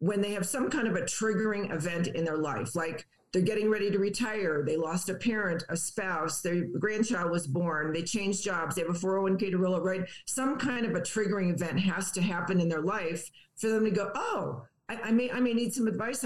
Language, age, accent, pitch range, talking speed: English, 50-69, American, 170-220 Hz, 235 wpm